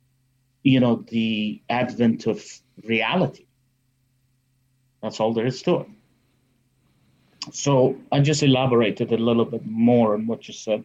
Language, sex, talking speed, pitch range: English, male, 135 wpm, 115-130 Hz